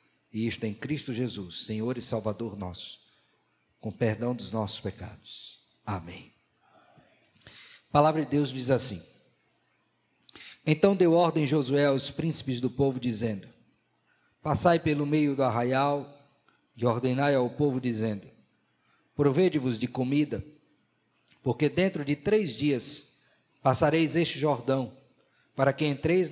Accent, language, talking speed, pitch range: Brazilian, Portuguese, 125 wpm, 120-150 Hz